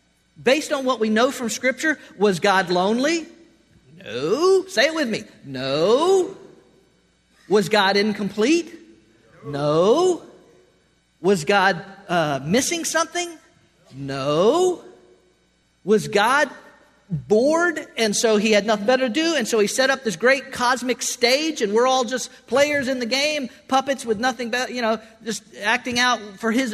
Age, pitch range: 50-69, 200-285 Hz